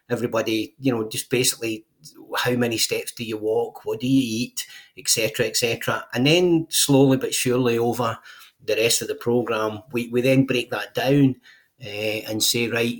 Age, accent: 40-59, British